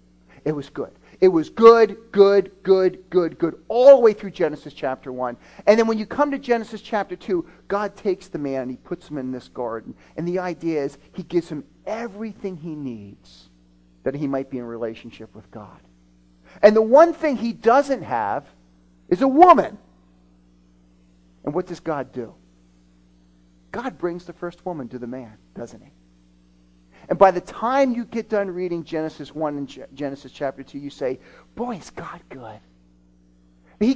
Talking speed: 180 wpm